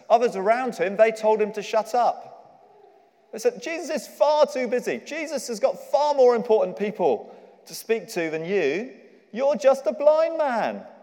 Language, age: English, 40-59